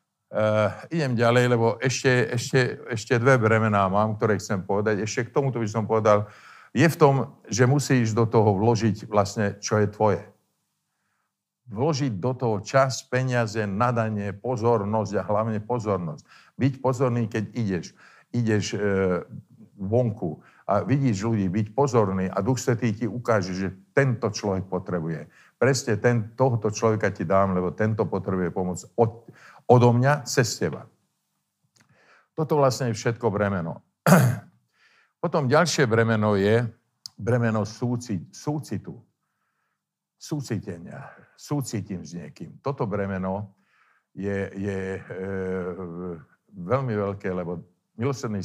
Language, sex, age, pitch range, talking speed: Slovak, male, 50-69, 100-125 Hz, 125 wpm